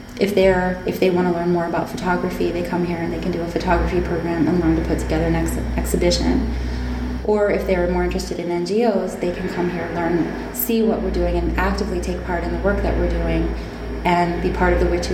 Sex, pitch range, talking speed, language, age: female, 160-185 Hz, 240 wpm, English, 20-39